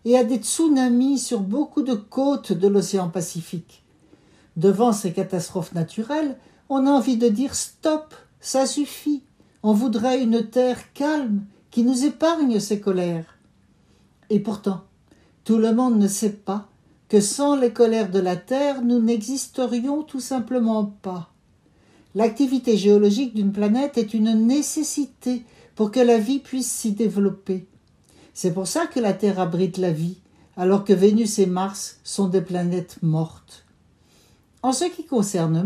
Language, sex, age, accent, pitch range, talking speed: French, male, 60-79, French, 190-265 Hz, 150 wpm